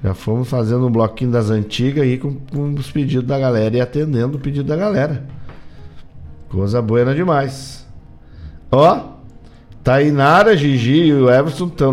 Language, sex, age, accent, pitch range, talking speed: Portuguese, male, 50-69, Brazilian, 105-150 Hz, 155 wpm